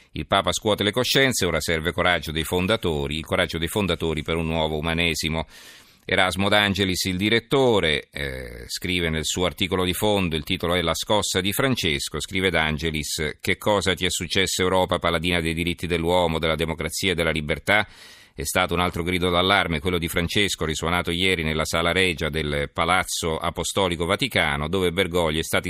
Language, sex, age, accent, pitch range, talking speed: Italian, male, 40-59, native, 80-95 Hz, 175 wpm